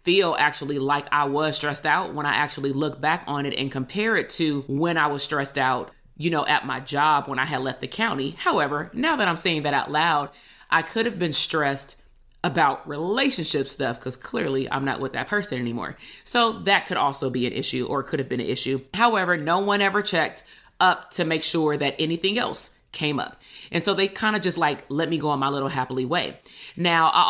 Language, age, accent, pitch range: English, 30-49, American, 140-180 Hz